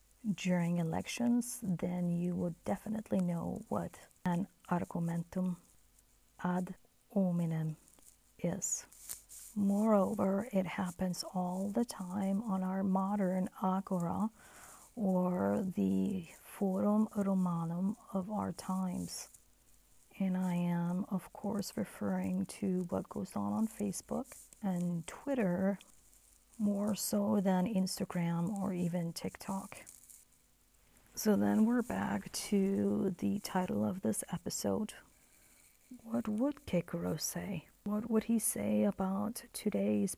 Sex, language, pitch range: female, English, 175-210 Hz